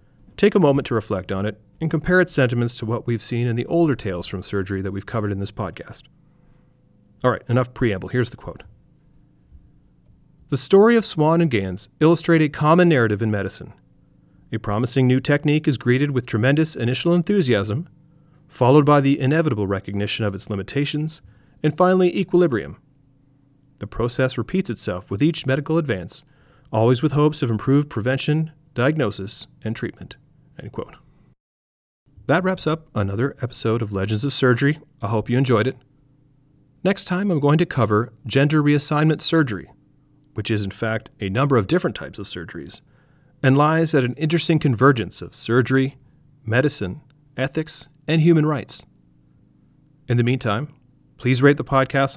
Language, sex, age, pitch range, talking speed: English, male, 40-59, 105-150 Hz, 160 wpm